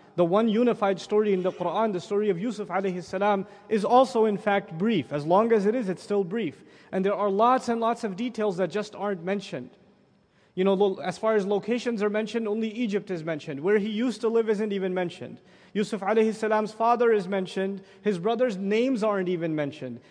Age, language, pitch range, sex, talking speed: 30-49, English, 200-250 Hz, male, 210 wpm